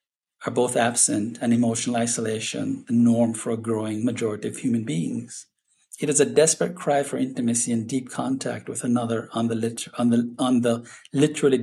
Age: 50-69